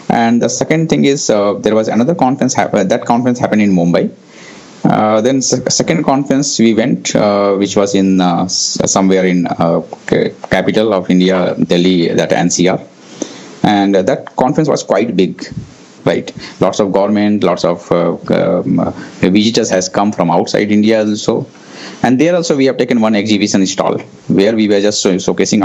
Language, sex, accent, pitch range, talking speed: English, male, Indian, 100-130 Hz, 165 wpm